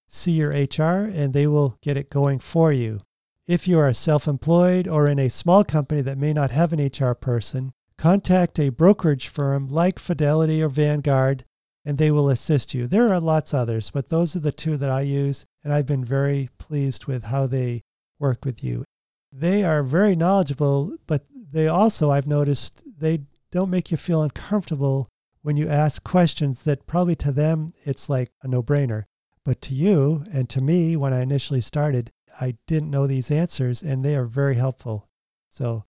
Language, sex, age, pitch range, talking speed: English, male, 40-59, 130-165 Hz, 185 wpm